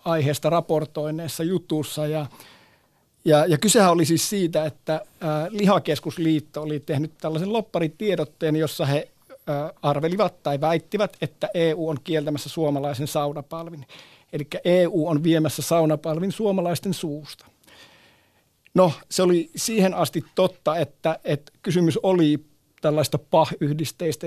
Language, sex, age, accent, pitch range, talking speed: Finnish, male, 50-69, native, 150-170 Hz, 115 wpm